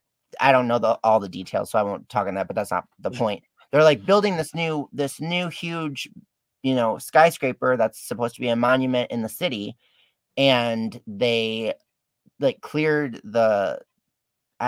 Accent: American